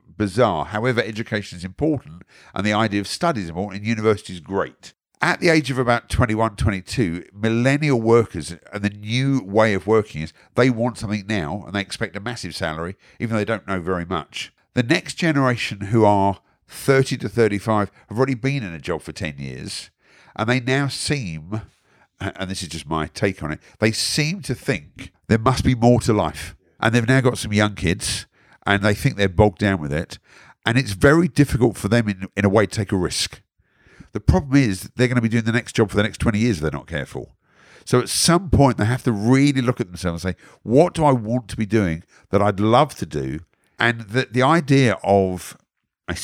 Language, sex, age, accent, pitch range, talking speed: English, male, 50-69, British, 95-125 Hz, 215 wpm